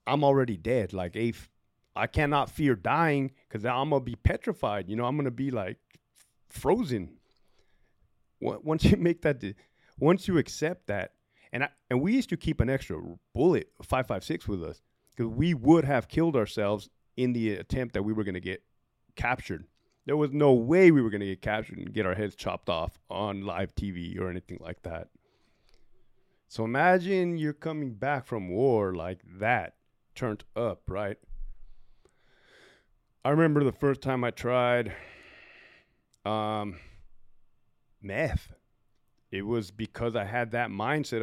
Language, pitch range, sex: English, 105-145 Hz, male